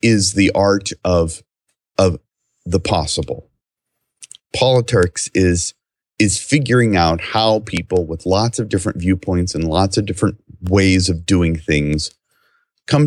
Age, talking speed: 40-59, 130 wpm